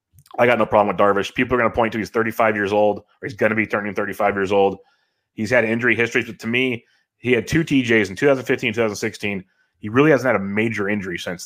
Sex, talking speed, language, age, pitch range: male, 245 wpm, English, 30-49, 105-120 Hz